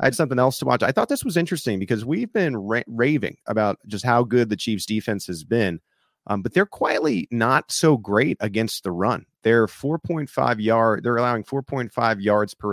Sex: male